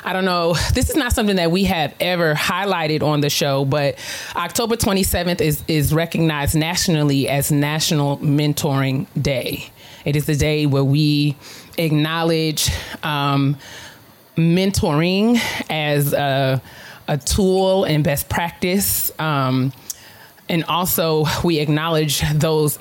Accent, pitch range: American, 140-165 Hz